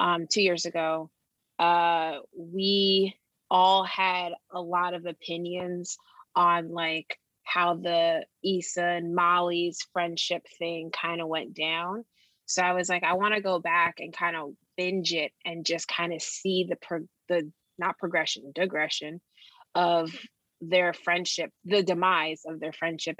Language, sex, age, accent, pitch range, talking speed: English, female, 20-39, American, 165-185 Hz, 145 wpm